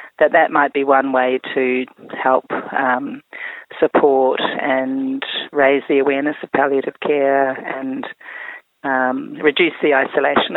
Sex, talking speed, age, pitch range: female, 125 wpm, 40-59, 135-175 Hz